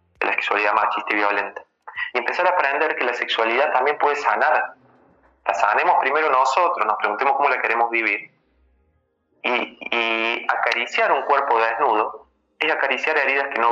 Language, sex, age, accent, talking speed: Spanish, male, 20-39, Argentinian, 160 wpm